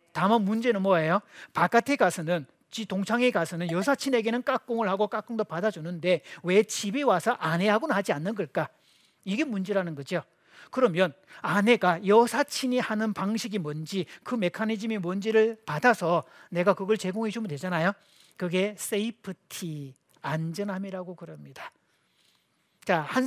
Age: 40-59